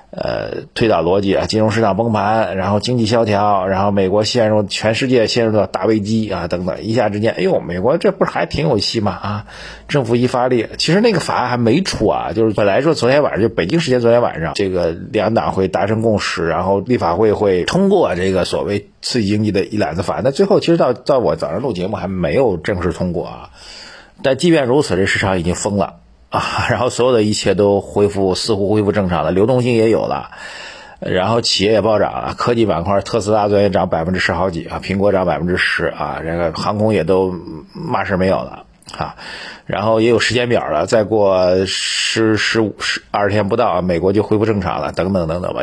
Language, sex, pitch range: Chinese, male, 95-115 Hz